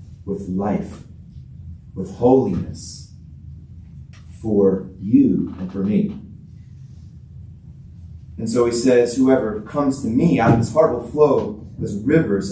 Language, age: English, 30-49